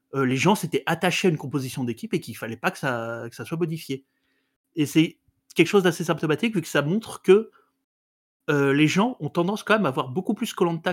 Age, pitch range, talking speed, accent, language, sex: 30-49, 130-170 Hz, 235 wpm, French, French, male